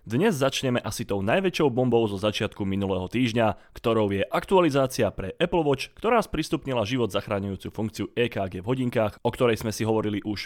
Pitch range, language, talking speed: 100-130 Hz, Slovak, 170 wpm